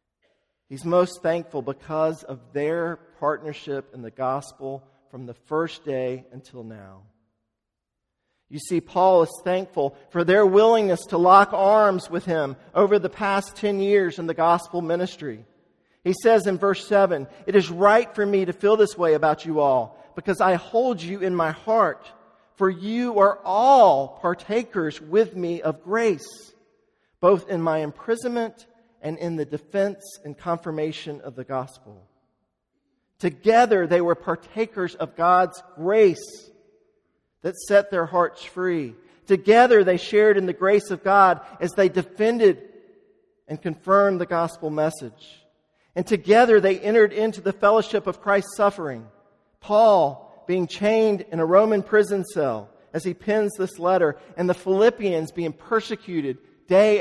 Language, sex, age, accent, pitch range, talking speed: English, male, 50-69, American, 155-205 Hz, 150 wpm